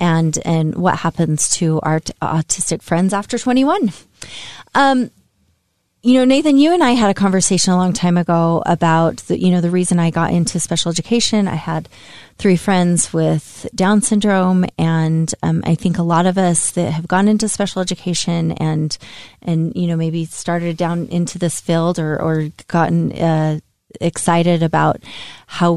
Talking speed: 175 wpm